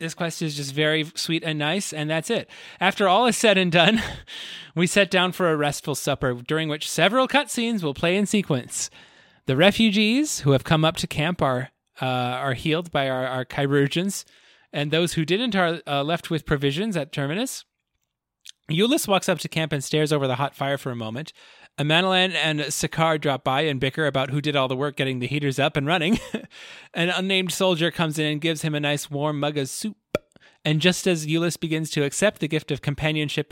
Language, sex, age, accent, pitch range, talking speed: English, male, 30-49, American, 140-180 Hz, 210 wpm